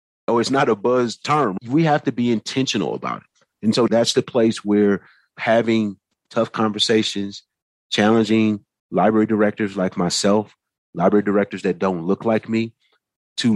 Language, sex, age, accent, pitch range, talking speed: English, male, 30-49, American, 95-110 Hz, 155 wpm